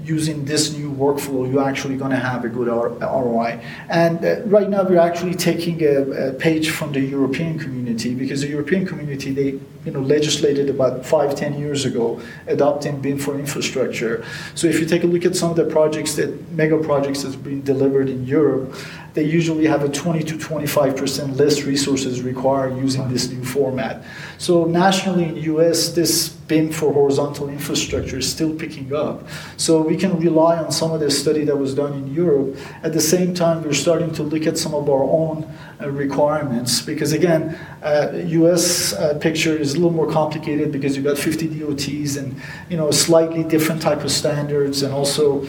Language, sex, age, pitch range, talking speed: English, male, 40-59, 140-160 Hz, 195 wpm